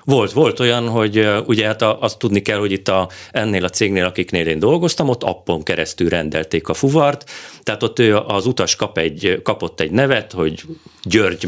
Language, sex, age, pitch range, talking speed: Hungarian, male, 40-59, 90-120 Hz, 185 wpm